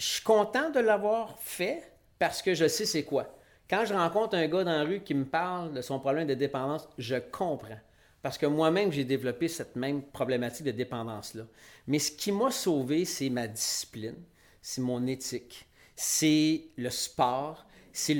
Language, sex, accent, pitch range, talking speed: French, male, Canadian, 130-170 Hz, 180 wpm